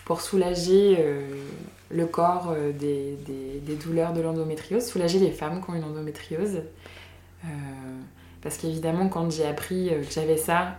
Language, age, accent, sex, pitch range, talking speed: French, 20-39, French, female, 150-185 Hz, 155 wpm